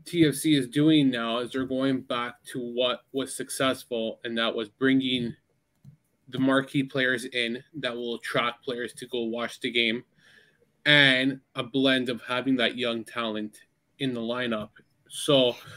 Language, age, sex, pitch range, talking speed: English, 20-39, male, 120-145 Hz, 155 wpm